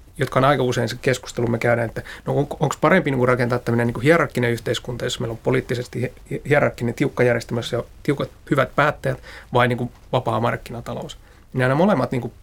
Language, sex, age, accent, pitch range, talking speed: Finnish, male, 30-49, native, 120-140 Hz, 185 wpm